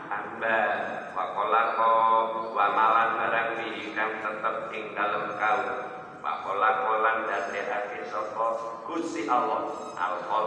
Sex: male